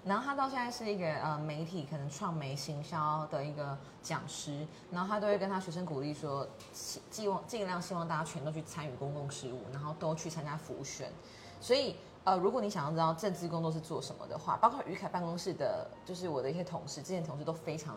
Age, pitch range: 20-39, 145-180 Hz